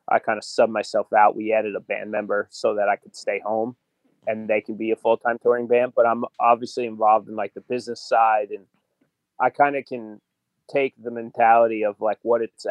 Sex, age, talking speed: male, 20-39, 215 wpm